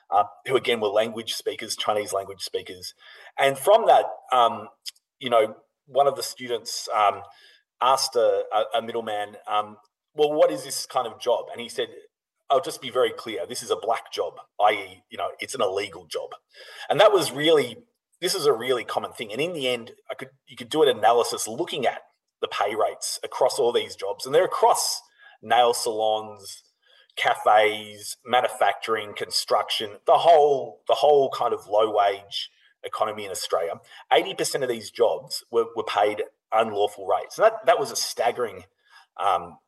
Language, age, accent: English, 30-49, Australian